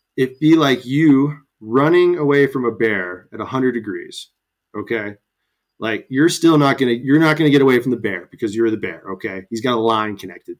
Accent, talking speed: American, 210 wpm